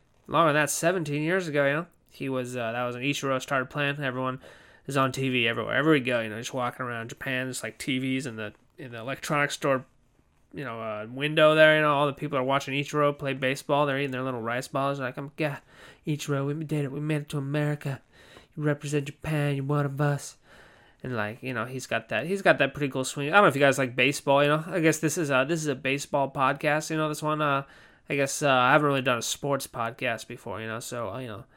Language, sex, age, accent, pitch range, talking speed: English, male, 20-39, American, 125-145 Hz, 260 wpm